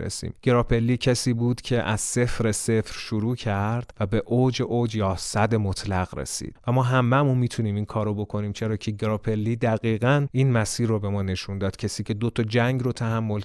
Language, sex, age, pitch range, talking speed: Persian, male, 30-49, 100-120 Hz, 195 wpm